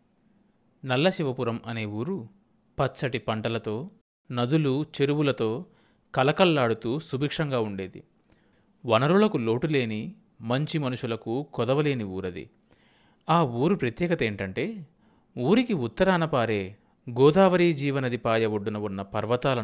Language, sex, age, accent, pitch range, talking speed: Telugu, male, 30-49, native, 110-150 Hz, 90 wpm